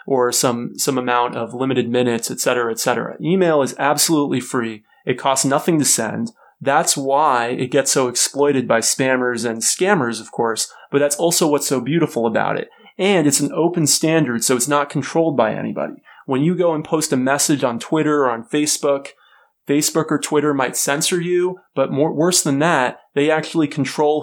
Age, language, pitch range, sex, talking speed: 30-49, English, 125-150 Hz, male, 185 wpm